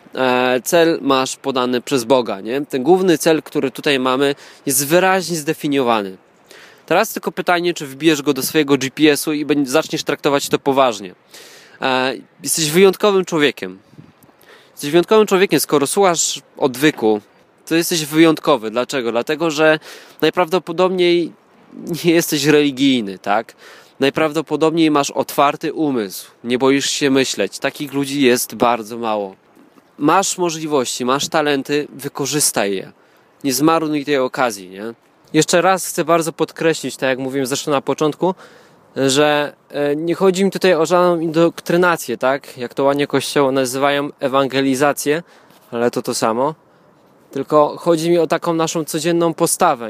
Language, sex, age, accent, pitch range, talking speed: Polish, male, 20-39, native, 135-165 Hz, 130 wpm